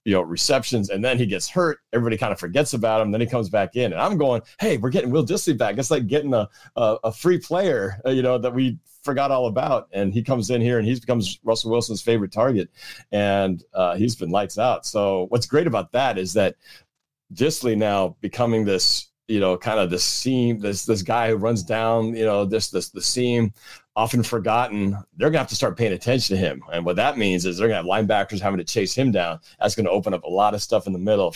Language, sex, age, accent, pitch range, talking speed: English, male, 40-59, American, 100-125 Hz, 250 wpm